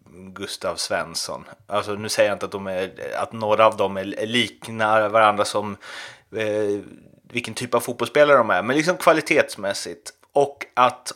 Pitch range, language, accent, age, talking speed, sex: 100-130 Hz, Swedish, native, 30-49, 160 wpm, male